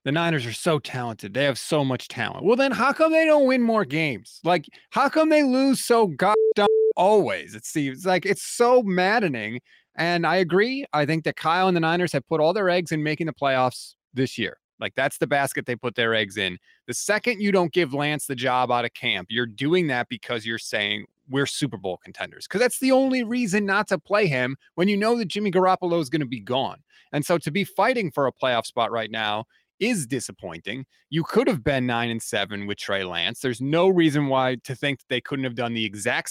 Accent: American